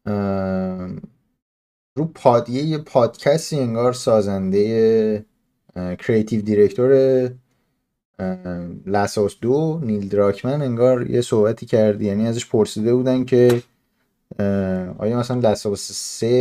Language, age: Persian, 30-49